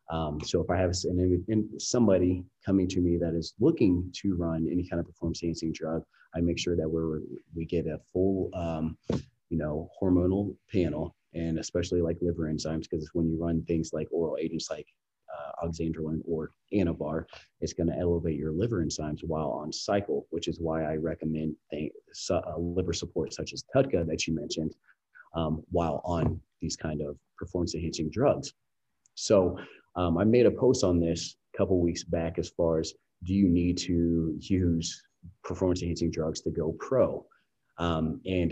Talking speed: 180 wpm